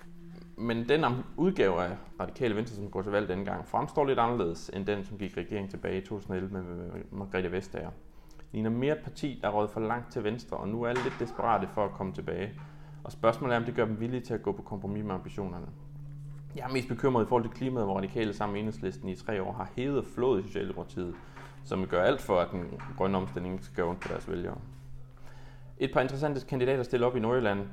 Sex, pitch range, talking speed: male, 100-120 Hz, 220 wpm